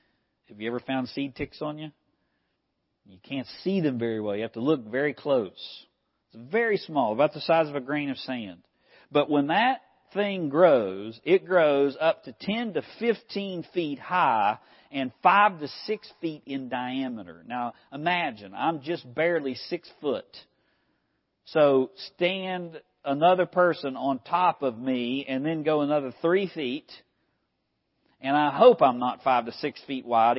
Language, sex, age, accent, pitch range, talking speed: English, male, 50-69, American, 130-190 Hz, 165 wpm